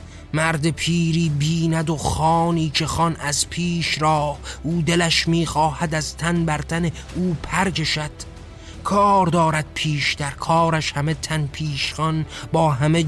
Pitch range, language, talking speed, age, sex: 150-170 Hz, Persian, 135 wpm, 30-49, male